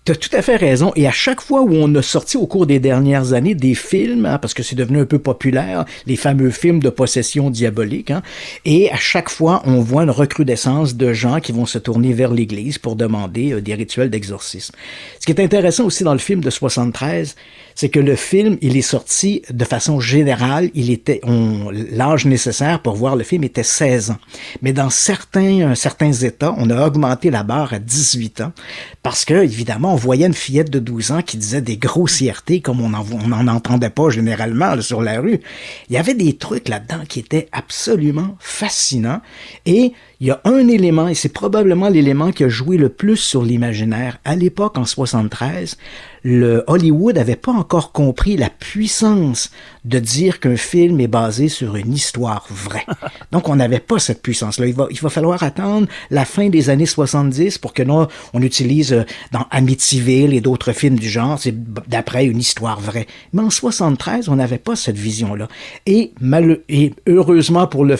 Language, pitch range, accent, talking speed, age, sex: French, 120-160 Hz, Canadian, 200 wpm, 50-69, male